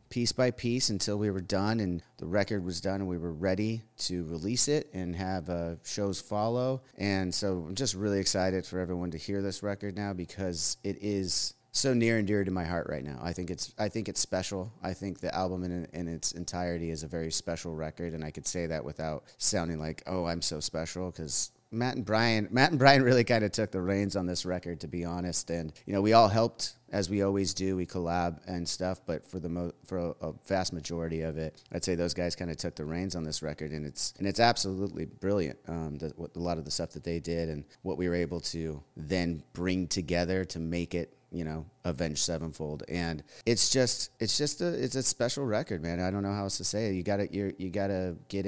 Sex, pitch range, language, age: male, 85-105 Hz, English, 30-49